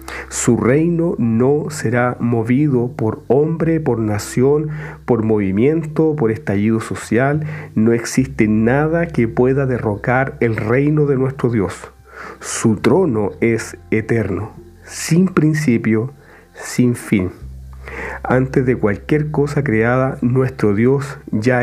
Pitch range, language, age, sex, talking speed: 105-130 Hz, Spanish, 40-59, male, 115 wpm